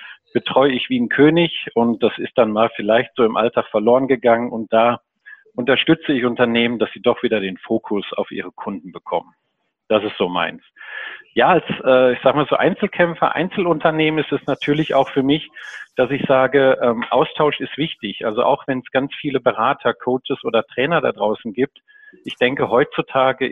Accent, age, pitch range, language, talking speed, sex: German, 40-59, 115-145 Hz, German, 180 wpm, male